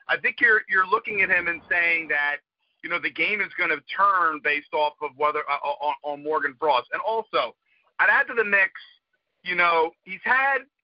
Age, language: 40-59, English